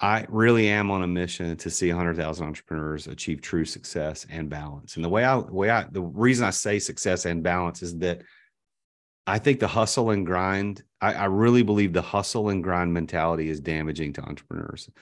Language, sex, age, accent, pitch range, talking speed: English, male, 30-49, American, 85-110 Hz, 200 wpm